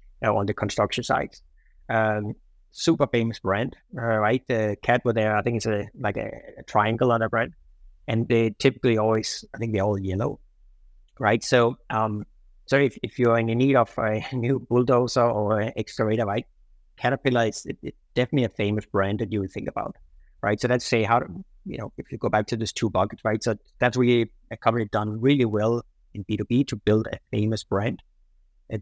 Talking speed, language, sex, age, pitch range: 200 wpm, English, male, 30-49, 105-120 Hz